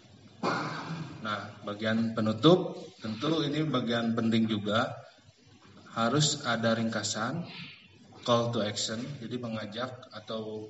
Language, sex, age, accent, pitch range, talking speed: Indonesian, male, 20-39, native, 110-125 Hz, 95 wpm